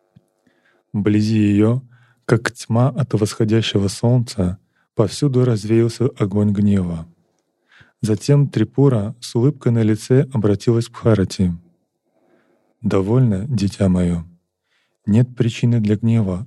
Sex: male